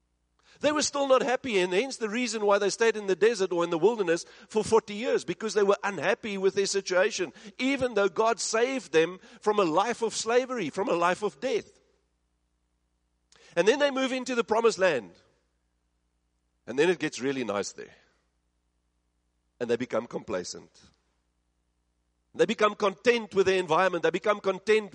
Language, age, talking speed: English, 50-69, 175 wpm